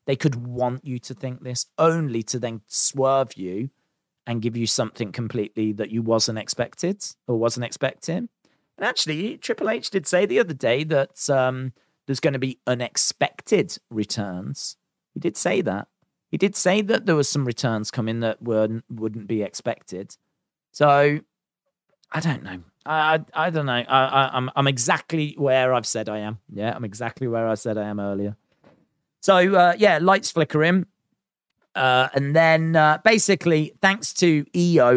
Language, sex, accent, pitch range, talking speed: English, male, British, 115-155 Hz, 165 wpm